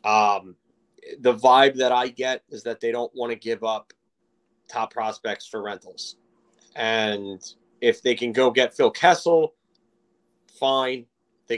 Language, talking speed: English, 145 wpm